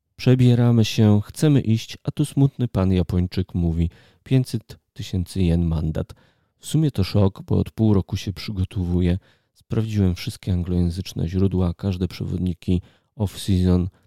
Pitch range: 90-120 Hz